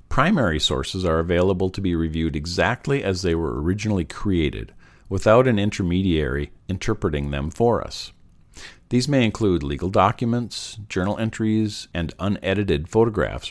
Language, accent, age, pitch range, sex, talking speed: English, American, 50-69, 80-110 Hz, male, 135 wpm